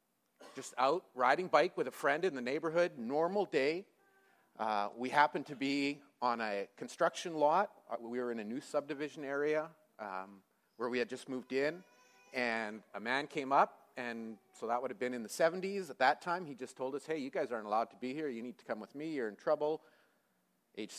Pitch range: 120-170 Hz